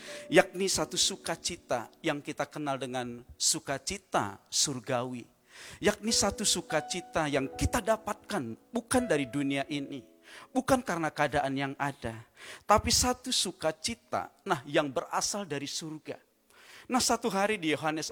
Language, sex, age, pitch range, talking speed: Indonesian, male, 40-59, 140-205 Hz, 125 wpm